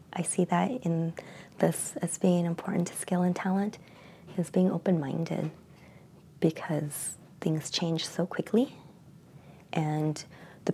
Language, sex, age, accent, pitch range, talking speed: English, female, 30-49, American, 155-185 Hz, 125 wpm